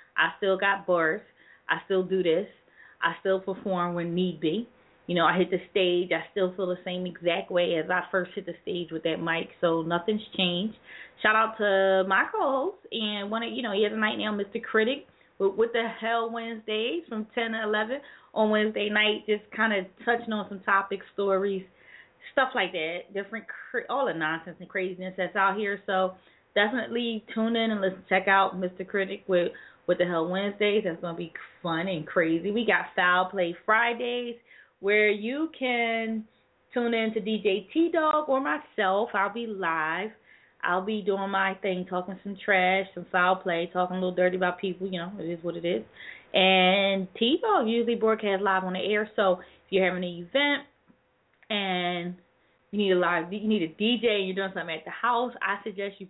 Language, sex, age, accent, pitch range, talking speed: English, female, 20-39, American, 180-220 Hz, 200 wpm